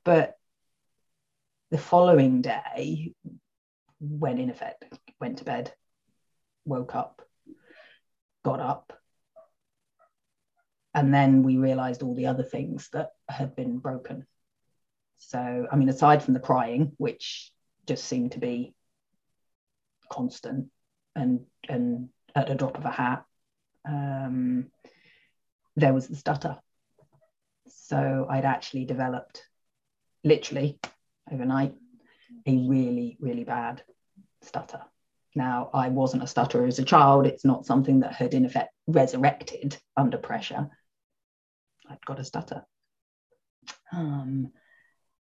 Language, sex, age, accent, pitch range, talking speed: English, female, 40-59, British, 125-165 Hz, 115 wpm